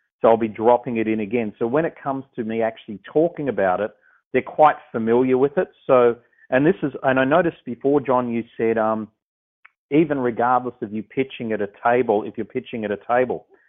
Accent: Australian